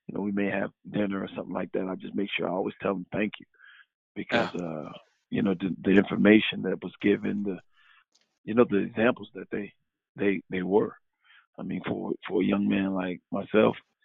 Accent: American